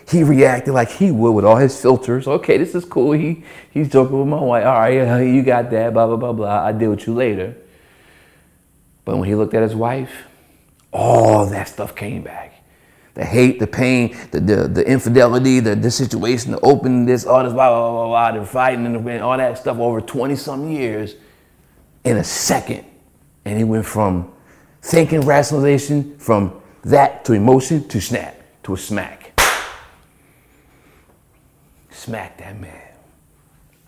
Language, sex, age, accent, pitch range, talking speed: English, male, 30-49, American, 95-130 Hz, 170 wpm